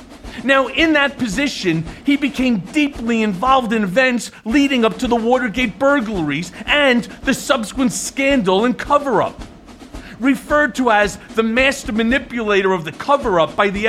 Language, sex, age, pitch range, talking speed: English, male, 40-59, 215-275 Hz, 145 wpm